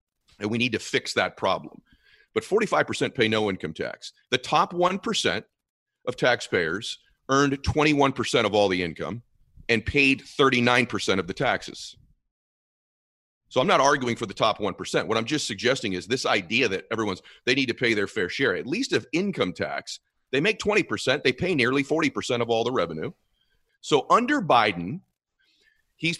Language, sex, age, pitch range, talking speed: English, male, 40-59, 105-145 Hz, 170 wpm